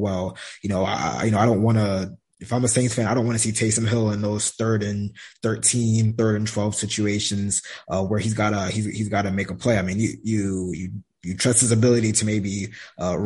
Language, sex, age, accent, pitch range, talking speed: English, male, 20-39, American, 95-110 Hz, 240 wpm